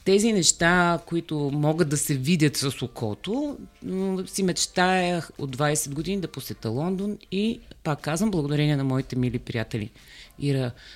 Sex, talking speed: female, 140 wpm